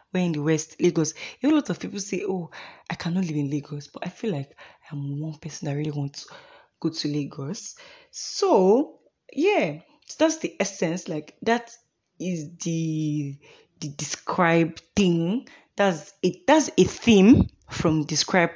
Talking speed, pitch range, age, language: 160 wpm, 155-190 Hz, 20-39, English